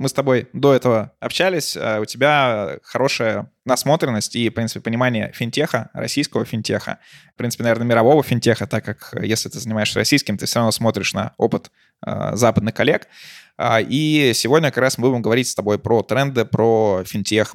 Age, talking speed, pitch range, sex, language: 20-39, 170 wpm, 110-130 Hz, male, Russian